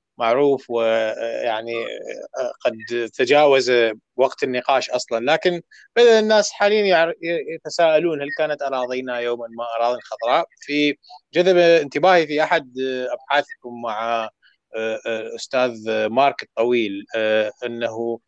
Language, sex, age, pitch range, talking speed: Arabic, male, 30-49, 120-165 Hz, 100 wpm